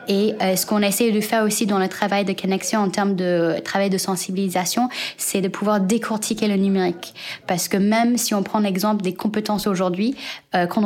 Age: 20-39